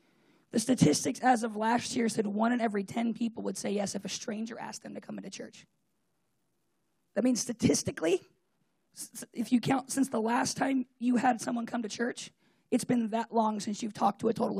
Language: English